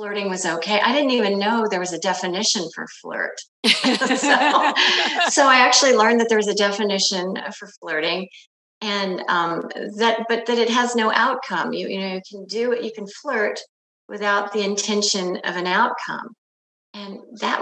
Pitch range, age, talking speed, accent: 180-230 Hz, 40-59, 175 wpm, American